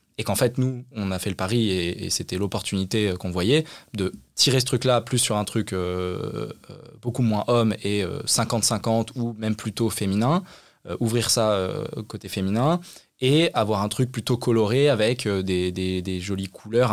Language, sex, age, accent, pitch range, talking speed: French, male, 20-39, French, 100-125 Hz, 185 wpm